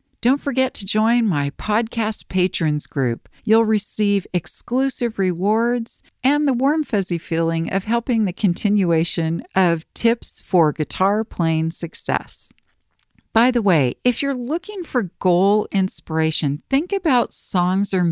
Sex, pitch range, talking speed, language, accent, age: female, 165-230 Hz, 130 wpm, English, American, 50-69